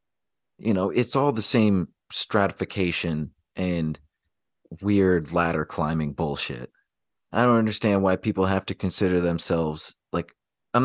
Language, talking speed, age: English, 125 wpm, 30-49